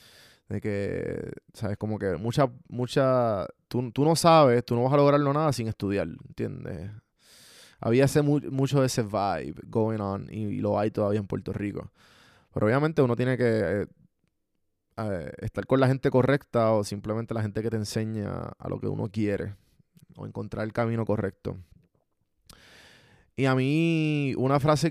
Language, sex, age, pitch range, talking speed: Spanish, male, 20-39, 105-130 Hz, 165 wpm